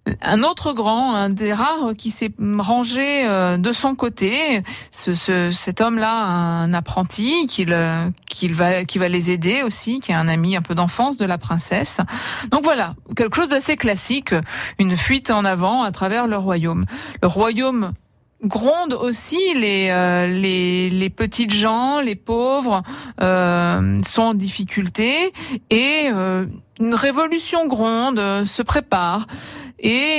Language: French